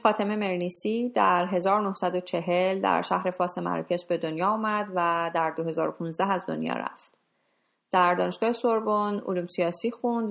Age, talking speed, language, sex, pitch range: 30-49, 130 wpm, Persian, female, 175-215 Hz